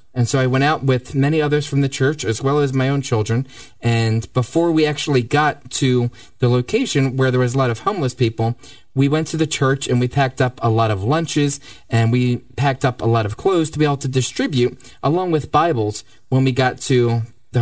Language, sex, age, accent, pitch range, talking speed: English, male, 30-49, American, 120-150 Hz, 230 wpm